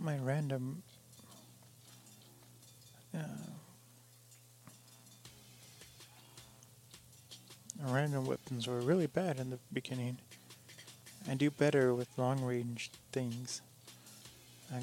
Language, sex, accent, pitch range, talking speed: English, male, American, 115-130 Hz, 75 wpm